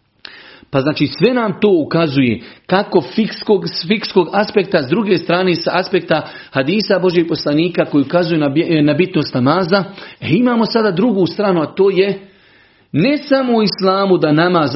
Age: 40-59